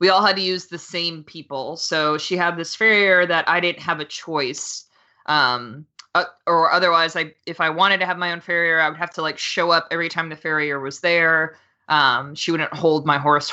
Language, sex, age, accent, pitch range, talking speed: English, female, 20-39, American, 155-200 Hz, 225 wpm